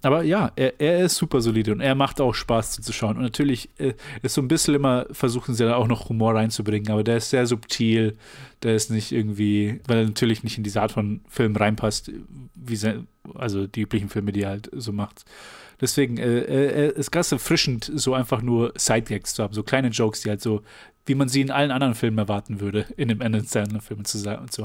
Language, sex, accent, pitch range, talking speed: German, male, German, 110-125 Hz, 230 wpm